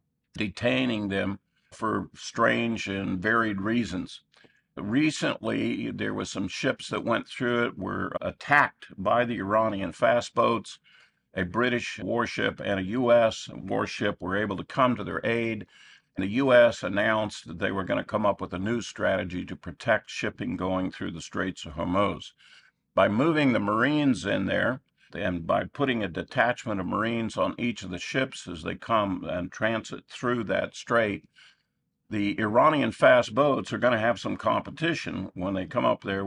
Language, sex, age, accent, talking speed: English, male, 50-69, American, 170 wpm